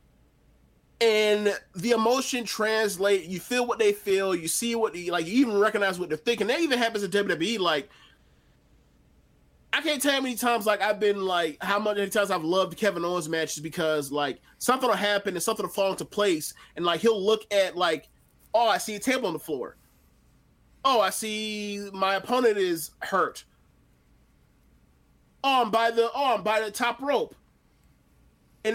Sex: male